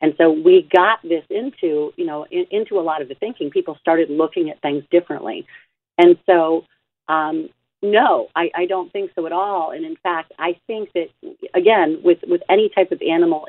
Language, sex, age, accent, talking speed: English, female, 40-59, American, 200 wpm